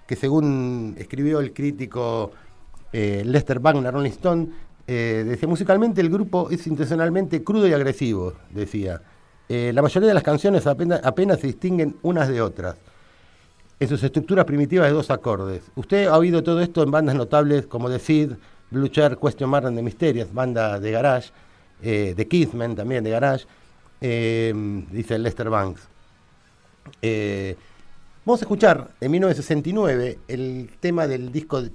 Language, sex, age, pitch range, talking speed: Spanish, male, 50-69, 105-150 Hz, 155 wpm